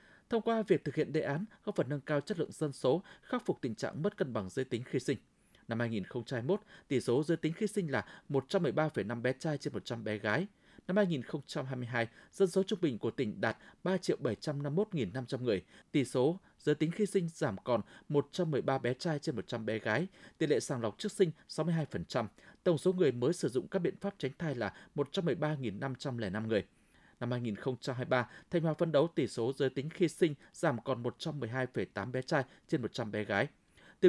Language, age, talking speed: Vietnamese, 20-39, 195 wpm